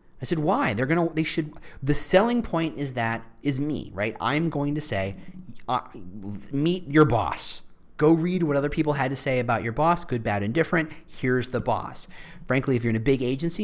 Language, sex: English, male